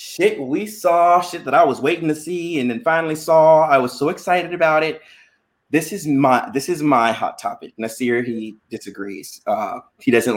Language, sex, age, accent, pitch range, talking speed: English, male, 20-39, American, 125-170 Hz, 195 wpm